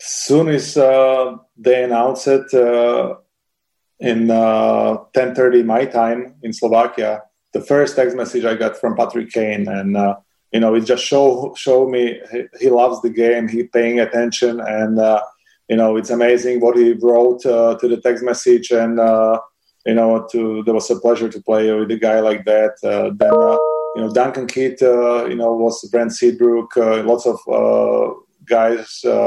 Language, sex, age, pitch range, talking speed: English, male, 30-49, 115-125 Hz, 180 wpm